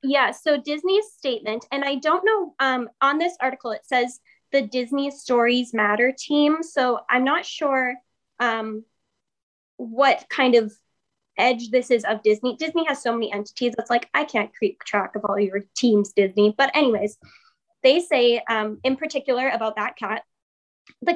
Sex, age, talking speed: female, 10-29, 165 wpm